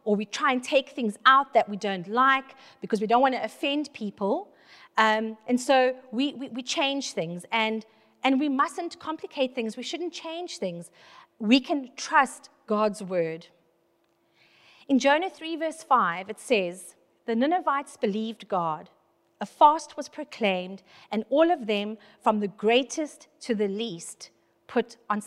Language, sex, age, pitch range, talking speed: English, female, 40-59, 205-280 Hz, 160 wpm